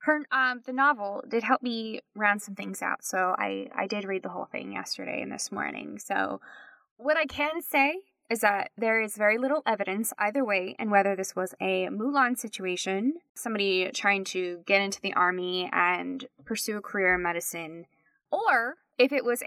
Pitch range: 190-255 Hz